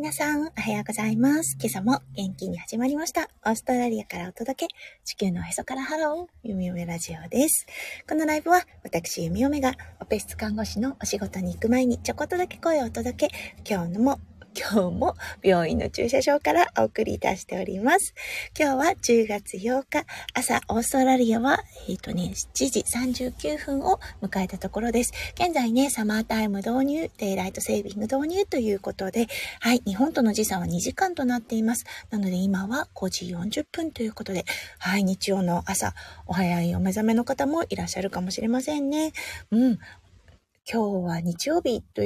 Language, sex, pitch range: Japanese, female, 205-285 Hz